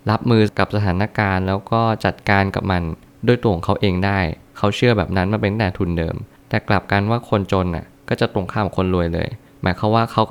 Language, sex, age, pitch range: Thai, male, 20-39, 95-115 Hz